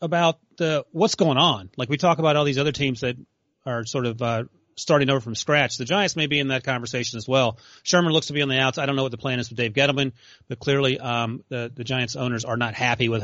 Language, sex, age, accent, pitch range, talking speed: English, male, 30-49, American, 125-160 Hz, 265 wpm